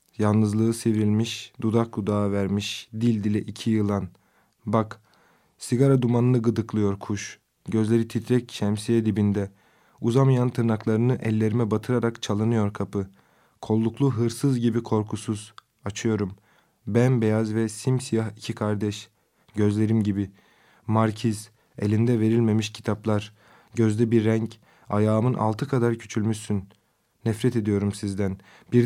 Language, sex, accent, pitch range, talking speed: Turkish, male, native, 105-120 Hz, 105 wpm